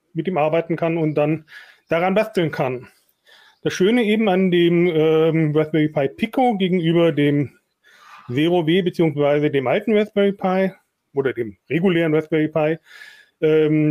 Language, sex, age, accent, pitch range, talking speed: German, male, 30-49, German, 155-205 Hz, 140 wpm